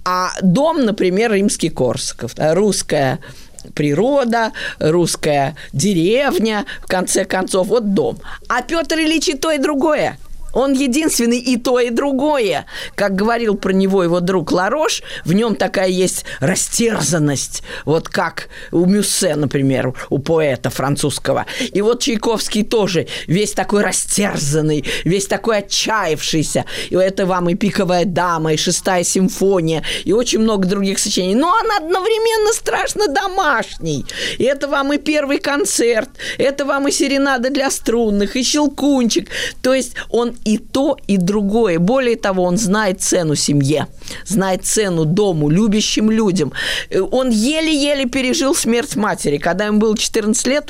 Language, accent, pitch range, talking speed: Russian, native, 185-270 Hz, 140 wpm